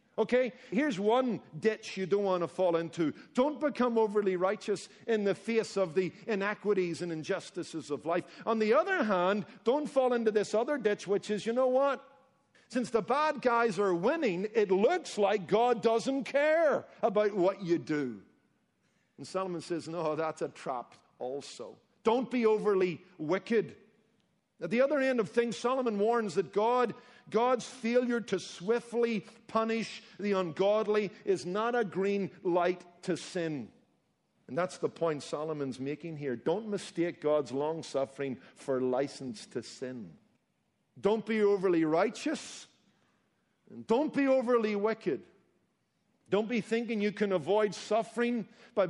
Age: 50-69